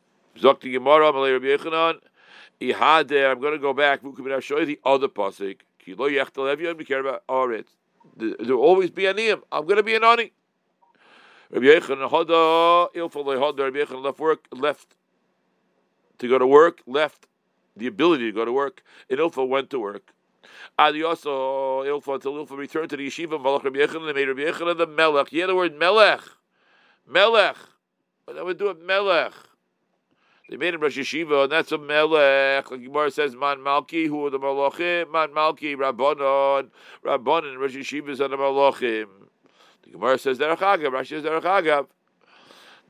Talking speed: 180 wpm